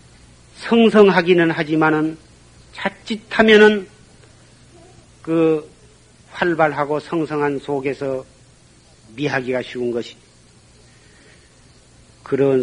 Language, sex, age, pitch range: Korean, male, 40-59, 115-150 Hz